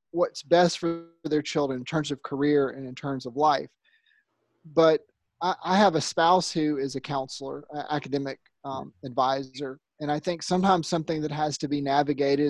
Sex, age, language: male, 30-49, English